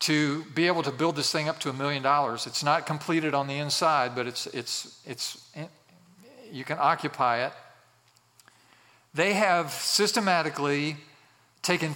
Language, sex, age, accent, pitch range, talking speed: English, male, 50-69, American, 140-175 Hz, 150 wpm